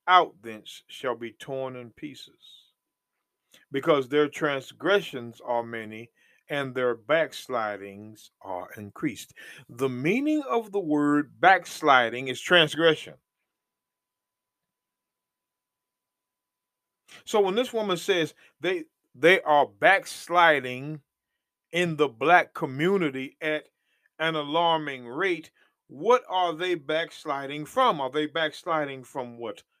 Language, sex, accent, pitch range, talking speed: English, male, American, 125-175 Hz, 105 wpm